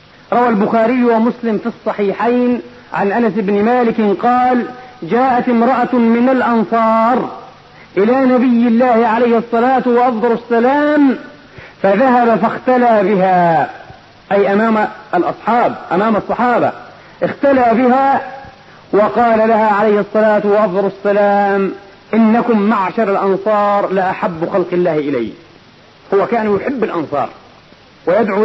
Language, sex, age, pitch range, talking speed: Arabic, male, 40-59, 210-250 Hz, 105 wpm